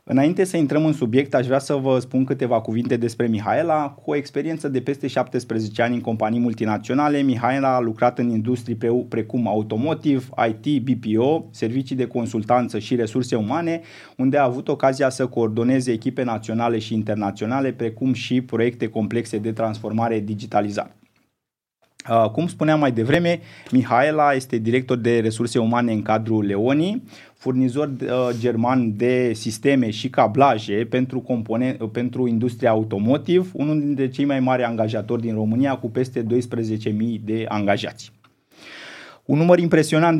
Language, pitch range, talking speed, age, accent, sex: Romanian, 115-140 Hz, 140 wpm, 20-39, native, male